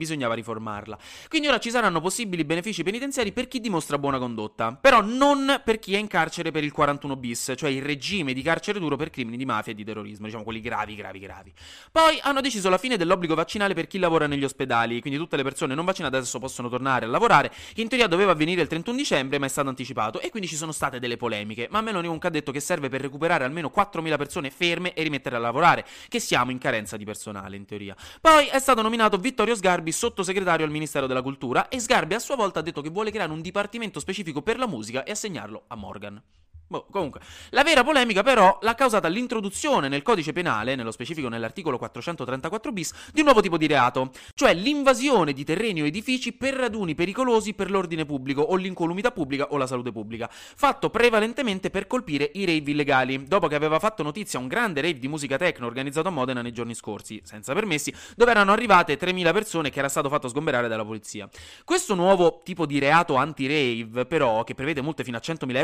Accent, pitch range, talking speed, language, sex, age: native, 130-200 Hz, 210 wpm, Italian, male, 20-39